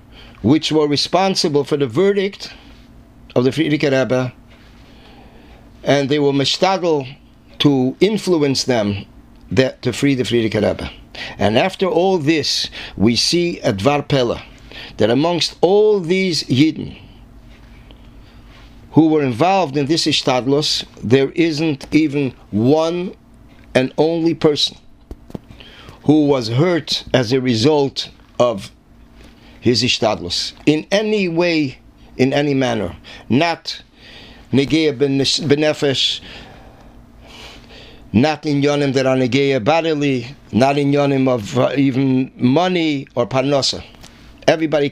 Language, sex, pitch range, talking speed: English, male, 125-155 Hz, 105 wpm